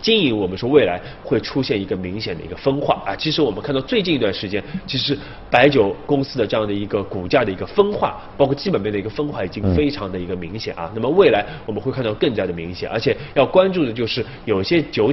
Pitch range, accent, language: 95-140 Hz, native, Chinese